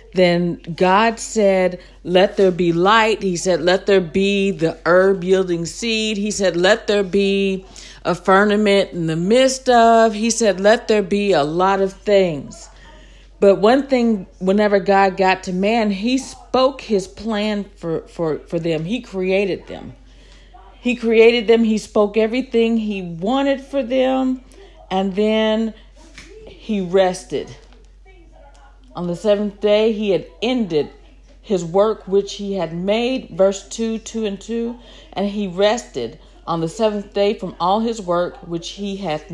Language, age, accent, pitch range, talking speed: English, 50-69, American, 185-225 Hz, 155 wpm